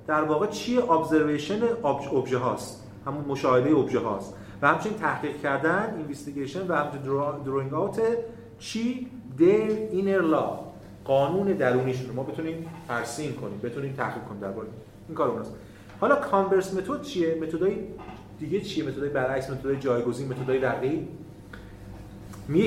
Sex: male